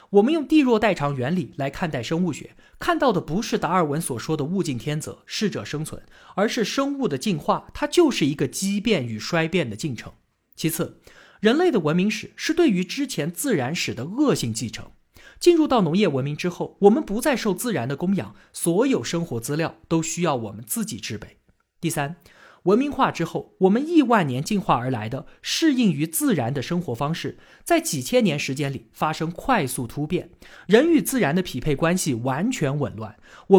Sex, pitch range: male, 145-220 Hz